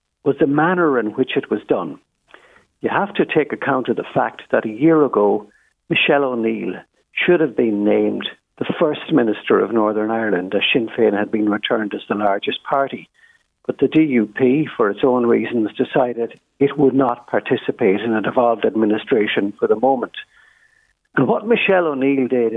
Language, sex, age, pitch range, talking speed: English, male, 60-79, 115-160 Hz, 175 wpm